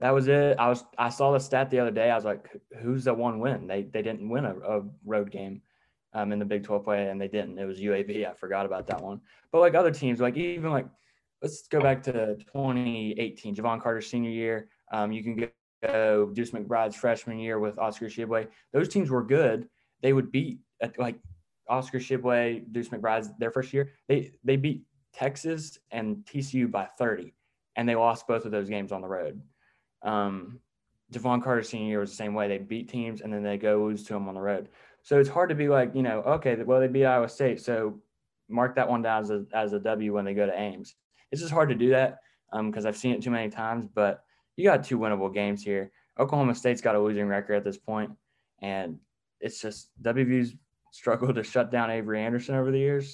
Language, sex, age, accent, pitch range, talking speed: English, male, 20-39, American, 105-130 Hz, 225 wpm